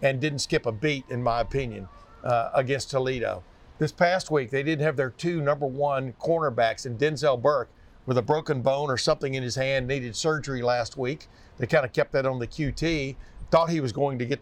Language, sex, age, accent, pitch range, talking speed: English, male, 50-69, American, 120-155 Hz, 215 wpm